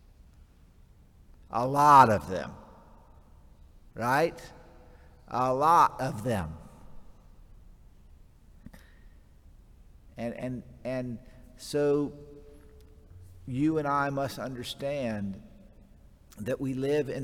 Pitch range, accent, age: 100-145 Hz, American, 50-69